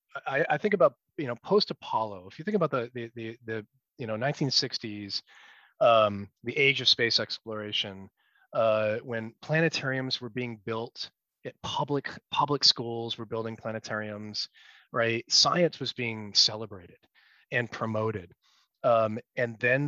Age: 30-49